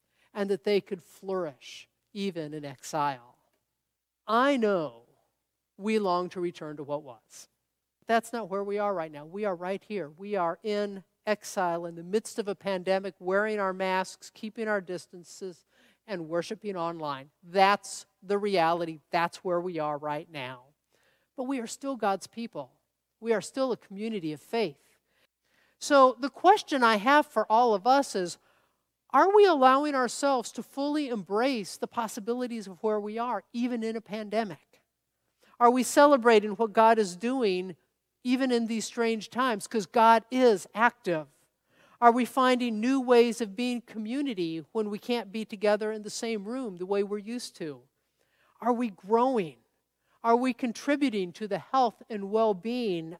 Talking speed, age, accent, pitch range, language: 165 wpm, 50-69, American, 180-235 Hz, English